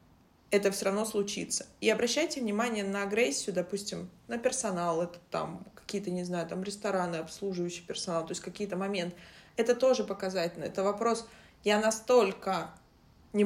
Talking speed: 145 wpm